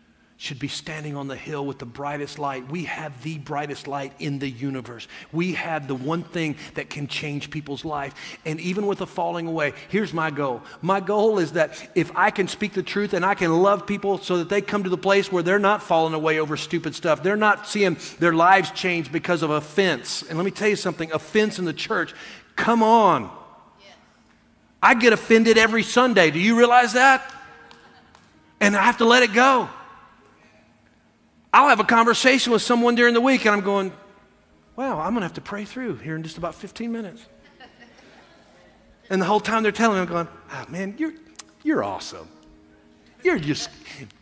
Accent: American